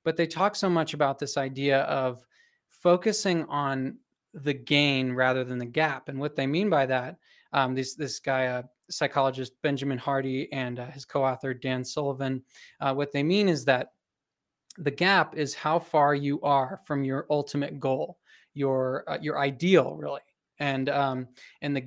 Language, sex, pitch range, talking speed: English, male, 135-155 Hz, 175 wpm